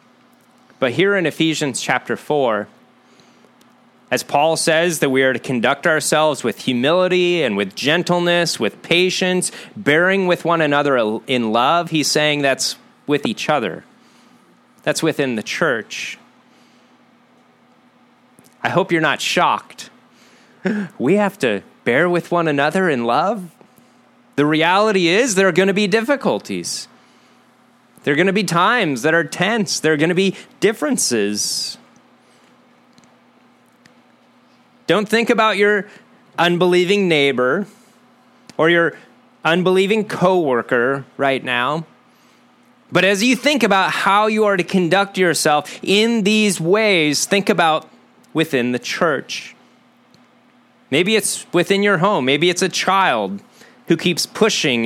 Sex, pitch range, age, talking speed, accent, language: male, 155-210 Hz, 30-49, 130 wpm, American, English